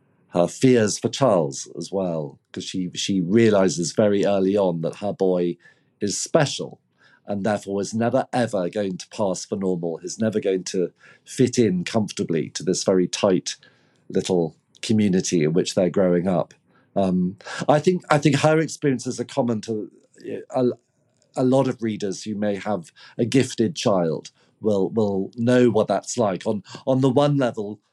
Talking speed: 170 wpm